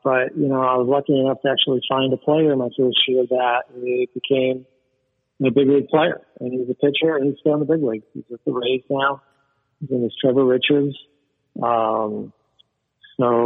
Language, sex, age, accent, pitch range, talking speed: English, male, 50-69, American, 120-140 Hz, 205 wpm